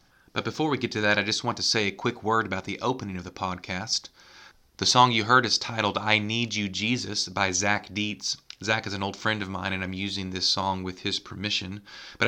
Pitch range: 95-110 Hz